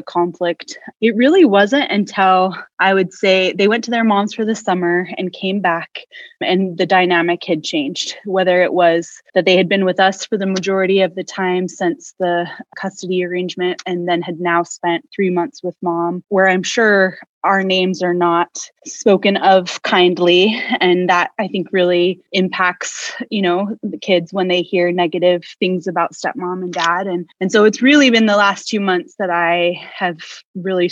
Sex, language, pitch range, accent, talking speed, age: female, English, 180-210 Hz, American, 185 wpm, 20-39